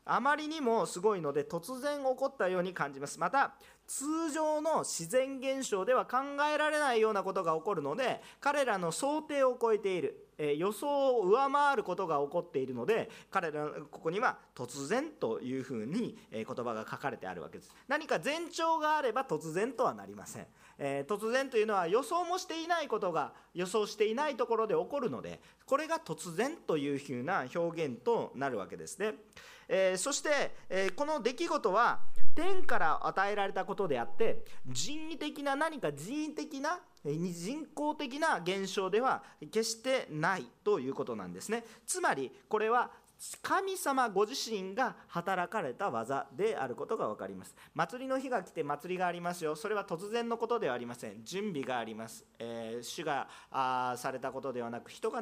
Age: 40-59